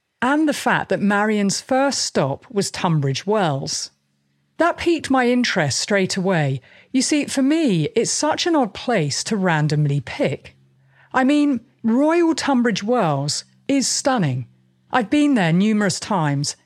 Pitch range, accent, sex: 160-240 Hz, British, female